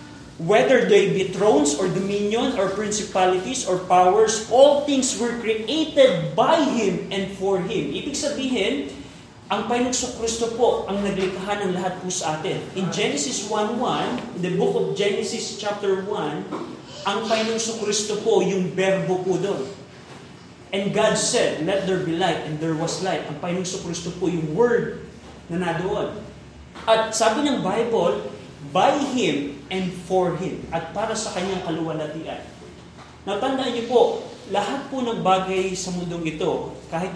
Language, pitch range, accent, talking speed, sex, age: Filipino, 180-215 Hz, native, 150 wpm, male, 20-39